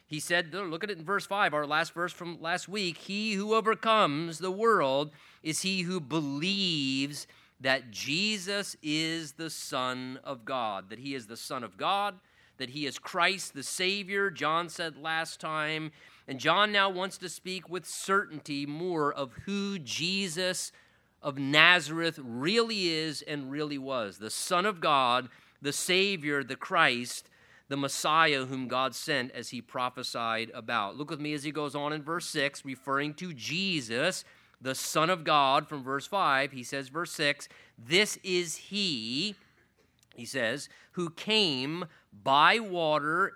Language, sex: English, male